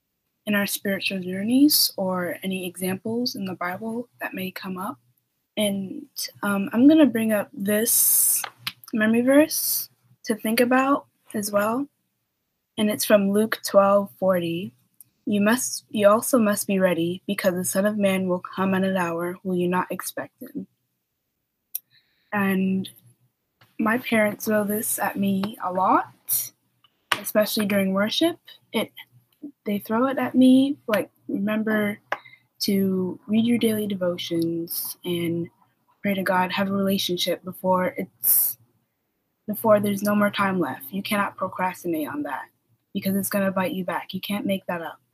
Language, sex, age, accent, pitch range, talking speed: English, female, 20-39, American, 180-215 Hz, 150 wpm